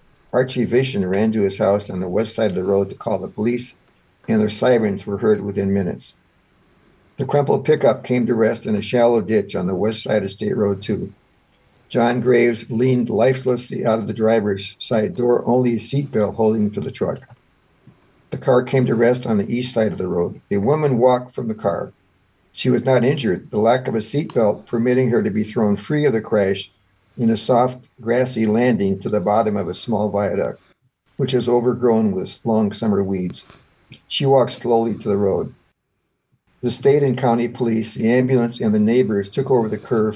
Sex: male